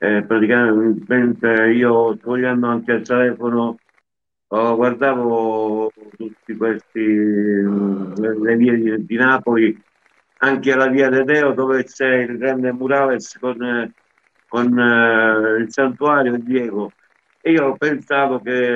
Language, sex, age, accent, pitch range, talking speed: Italian, male, 60-79, native, 110-130 Hz, 110 wpm